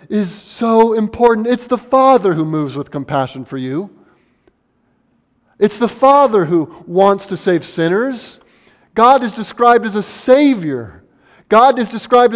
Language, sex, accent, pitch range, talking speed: English, male, American, 135-215 Hz, 140 wpm